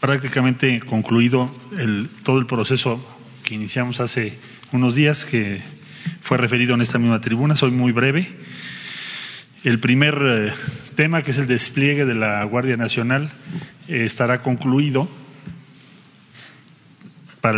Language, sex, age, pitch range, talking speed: Spanish, male, 40-59, 115-140 Hz, 125 wpm